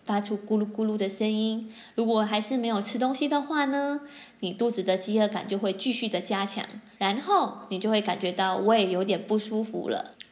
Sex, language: female, Chinese